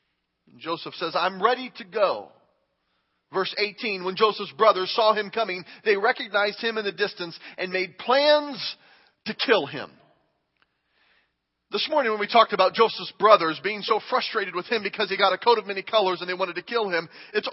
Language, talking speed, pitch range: English, 185 wpm, 190-280 Hz